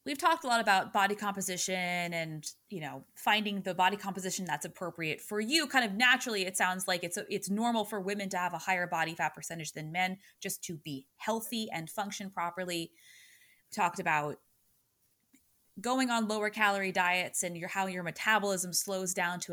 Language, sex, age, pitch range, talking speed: English, female, 20-39, 180-220 Hz, 190 wpm